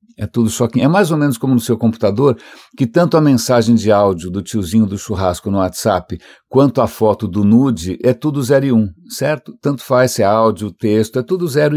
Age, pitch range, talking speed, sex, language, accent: 60-79, 110-130 Hz, 225 wpm, male, English, Brazilian